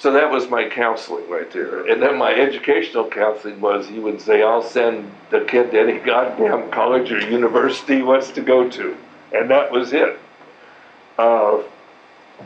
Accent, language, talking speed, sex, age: American, English, 175 wpm, male, 60-79